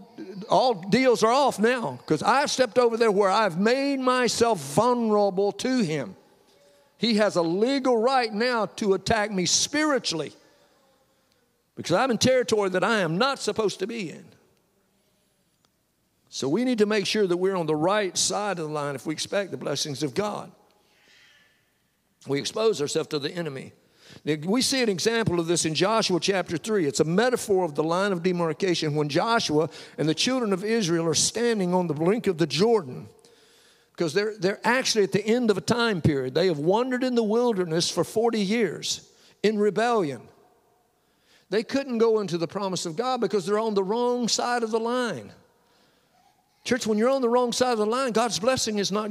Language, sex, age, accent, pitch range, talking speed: English, male, 50-69, American, 175-235 Hz, 185 wpm